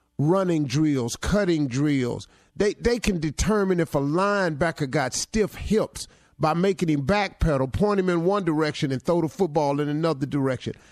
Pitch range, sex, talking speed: 145-205 Hz, male, 165 wpm